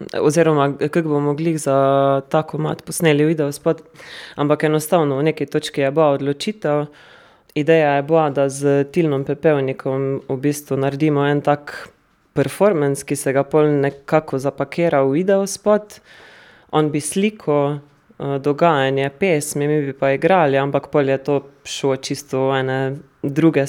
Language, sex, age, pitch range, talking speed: German, female, 20-39, 135-155 Hz, 145 wpm